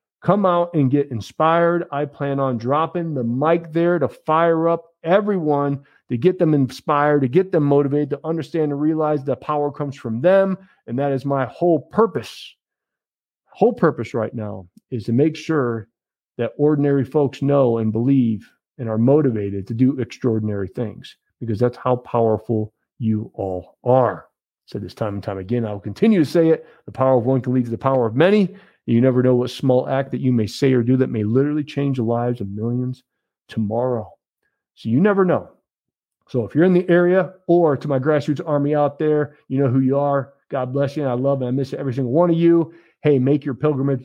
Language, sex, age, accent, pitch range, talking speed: English, male, 40-59, American, 120-155 Hz, 205 wpm